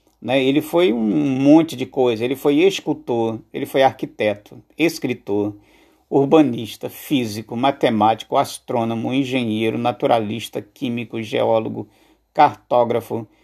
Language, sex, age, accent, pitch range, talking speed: Portuguese, male, 50-69, Brazilian, 115-140 Hz, 105 wpm